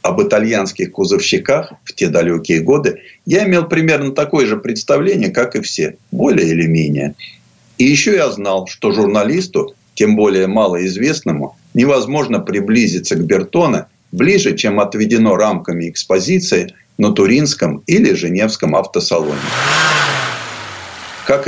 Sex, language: male, Russian